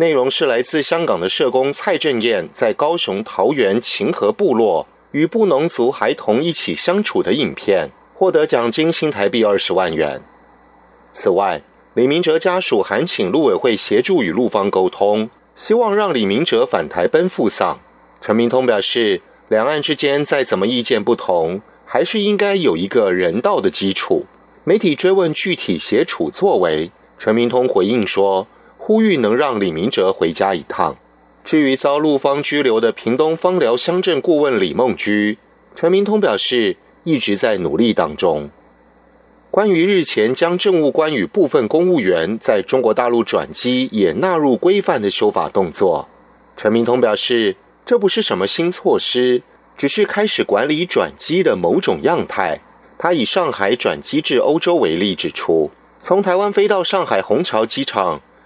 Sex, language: male, German